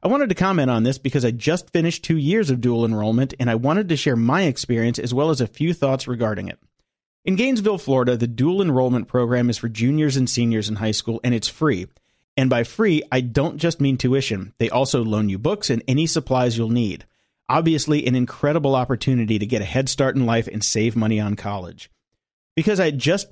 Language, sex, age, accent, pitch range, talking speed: English, male, 40-59, American, 115-150 Hz, 220 wpm